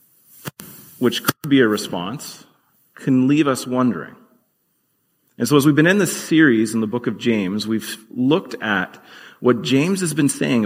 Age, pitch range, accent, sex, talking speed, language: 30-49, 110-155 Hz, American, male, 170 wpm, English